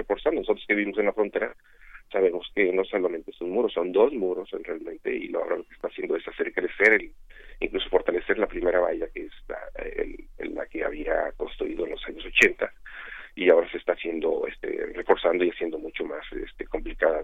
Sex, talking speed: male, 200 wpm